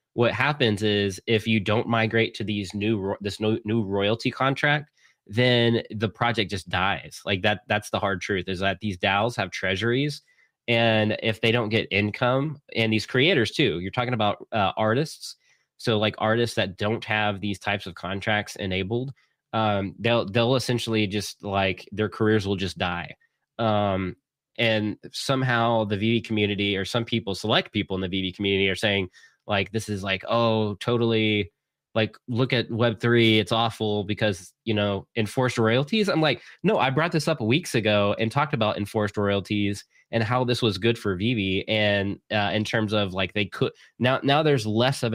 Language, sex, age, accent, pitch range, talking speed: English, male, 20-39, American, 100-115 Hz, 180 wpm